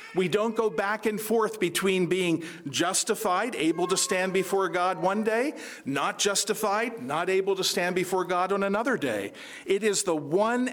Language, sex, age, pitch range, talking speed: English, male, 50-69, 155-210 Hz, 175 wpm